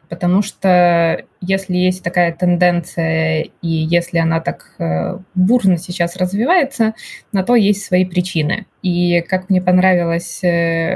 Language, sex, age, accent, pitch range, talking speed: Russian, female, 20-39, native, 175-200 Hz, 120 wpm